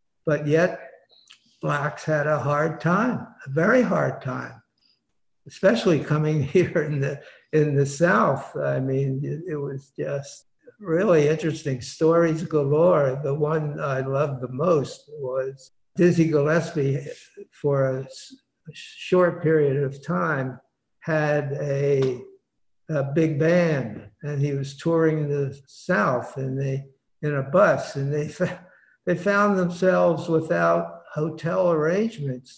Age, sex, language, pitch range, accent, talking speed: 60-79, male, English, 140-165 Hz, American, 125 wpm